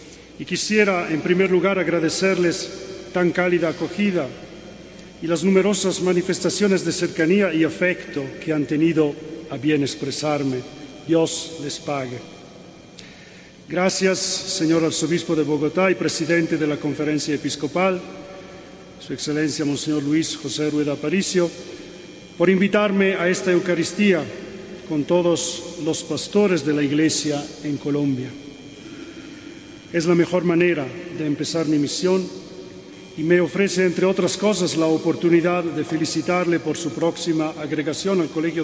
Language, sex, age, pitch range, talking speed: Spanish, male, 40-59, 150-180 Hz, 125 wpm